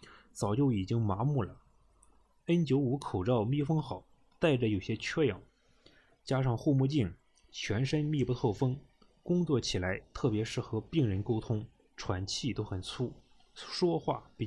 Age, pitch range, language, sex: 20-39, 105-145 Hz, Chinese, male